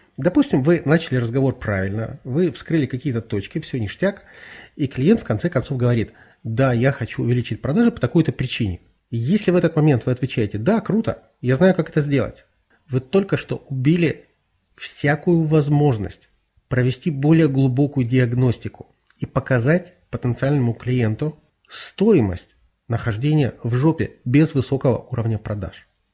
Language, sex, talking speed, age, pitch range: Russian, male, 140 wpm, 30-49, 115-145 Hz